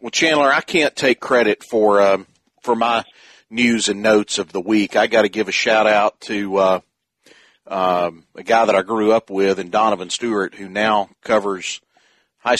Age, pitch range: 40-59, 100-125 Hz